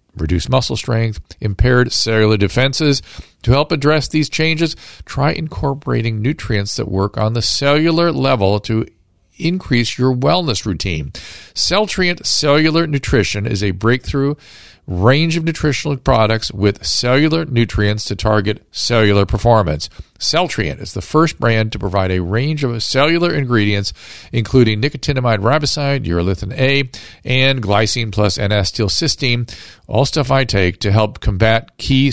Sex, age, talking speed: male, 50-69, 135 wpm